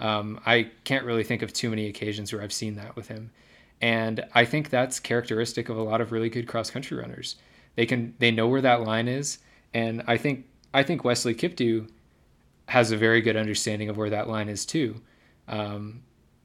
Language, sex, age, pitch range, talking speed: English, male, 20-39, 105-120 Hz, 205 wpm